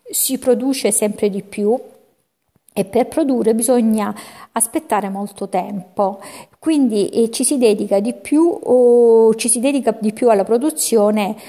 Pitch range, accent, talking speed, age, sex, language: 195-235 Hz, native, 135 wpm, 50-69, female, Italian